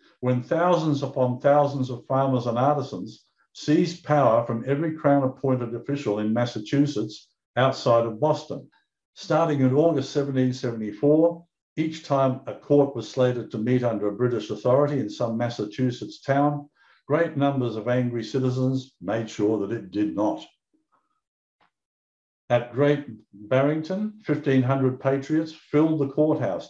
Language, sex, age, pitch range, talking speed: English, male, 60-79, 120-145 Hz, 130 wpm